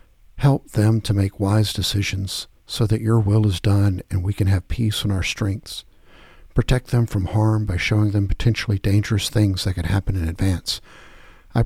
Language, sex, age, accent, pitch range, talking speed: English, male, 60-79, American, 85-115 Hz, 185 wpm